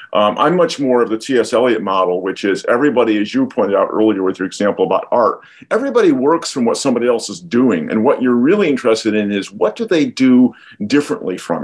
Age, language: 50-69, English